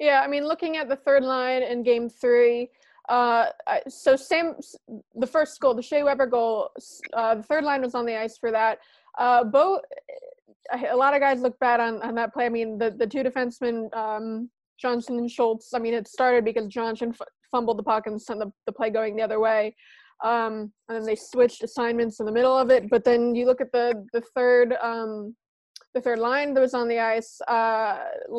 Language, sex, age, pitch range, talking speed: English, female, 20-39, 225-260 Hz, 210 wpm